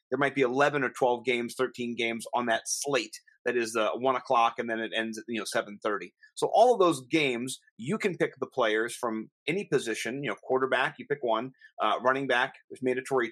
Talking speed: 225 wpm